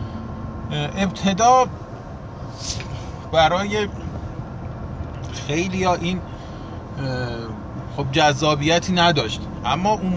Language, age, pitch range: Persian, 30-49, 120-195 Hz